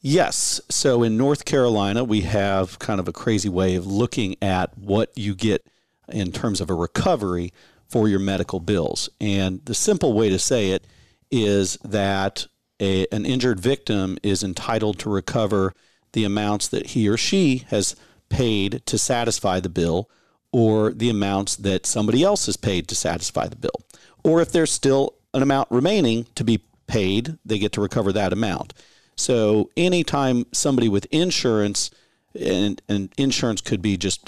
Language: English